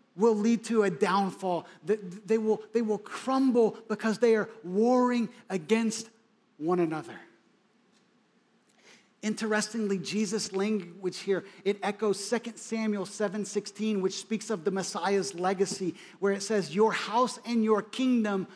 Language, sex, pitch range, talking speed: English, male, 200-230 Hz, 125 wpm